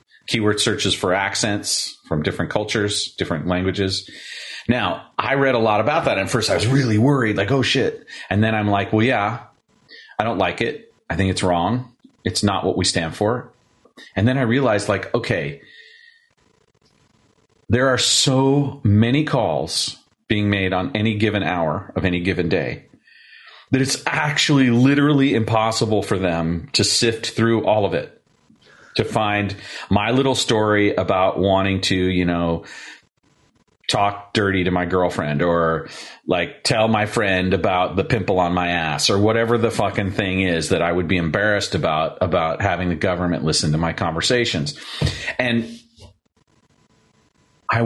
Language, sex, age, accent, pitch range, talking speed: English, male, 30-49, American, 95-120 Hz, 160 wpm